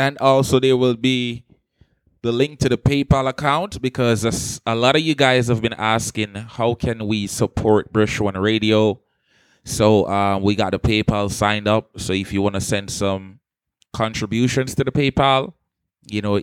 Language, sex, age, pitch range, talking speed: English, male, 20-39, 95-115 Hz, 175 wpm